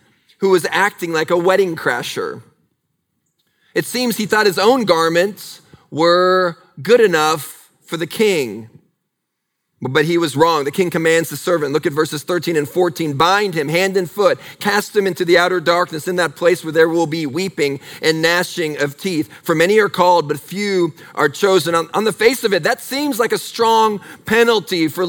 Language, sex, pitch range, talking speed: English, male, 150-190 Hz, 185 wpm